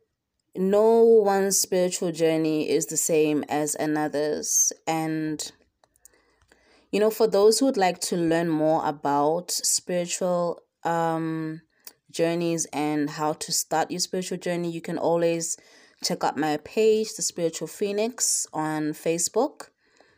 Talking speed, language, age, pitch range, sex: 130 wpm, English, 20-39, 155-195 Hz, female